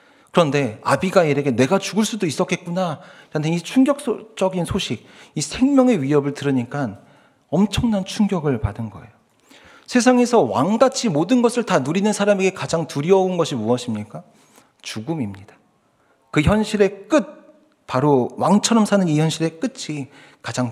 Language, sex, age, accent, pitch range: Korean, male, 40-59, native, 110-185 Hz